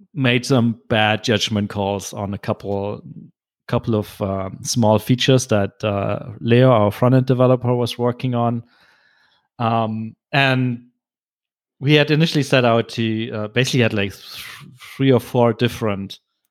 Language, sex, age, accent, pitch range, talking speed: English, male, 30-49, German, 110-130 Hz, 145 wpm